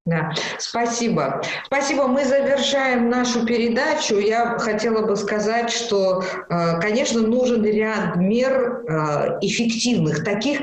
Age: 50-69